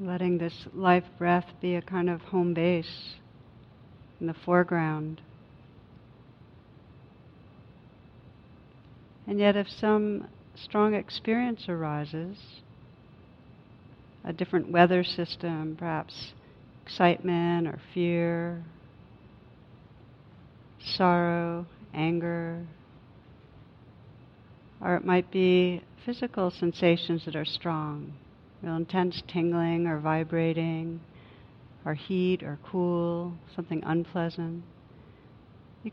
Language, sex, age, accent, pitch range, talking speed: English, female, 60-79, American, 155-185 Hz, 85 wpm